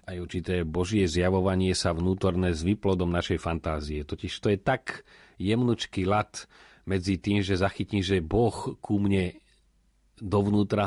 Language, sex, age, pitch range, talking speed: Slovak, male, 40-59, 90-105 Hz, 140 wpm